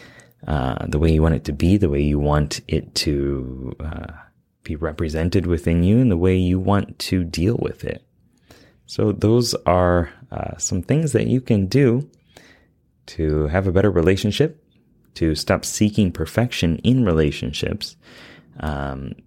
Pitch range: 80-100 Hz